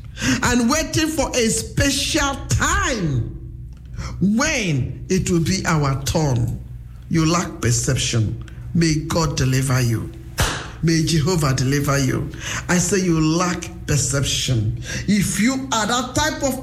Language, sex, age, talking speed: English, male, 50-69, 125 wpm